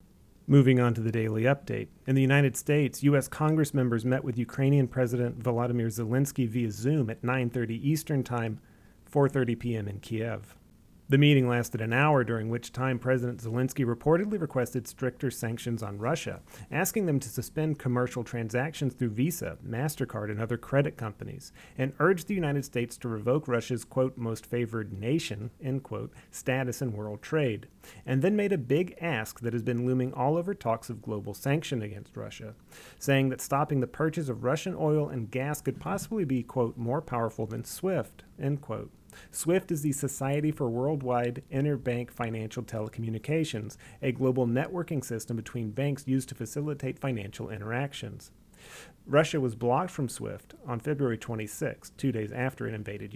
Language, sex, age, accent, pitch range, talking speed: English, male, 30-49, American, 115-145 Hz, 165 wpm